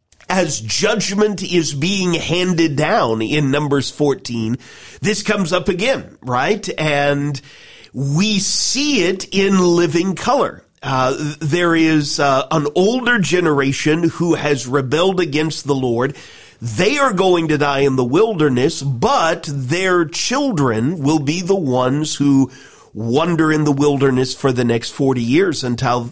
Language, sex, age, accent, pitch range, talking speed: English, male, 40-59, American, 135-175 Hz, 140 wpm